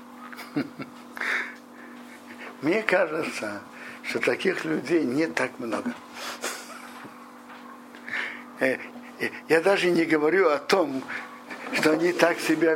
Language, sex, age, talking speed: Russian, male, 60-79, 85 wpm